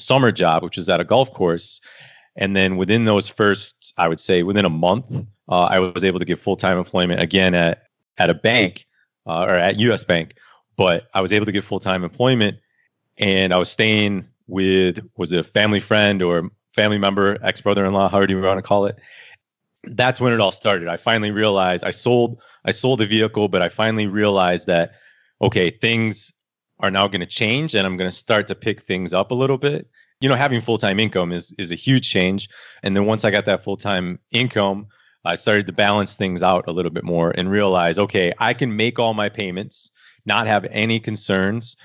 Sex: male